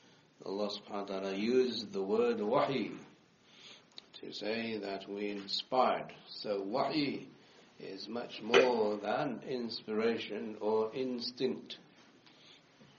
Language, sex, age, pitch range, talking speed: English, male, 60-79, 95-115 Hz, 100 wpm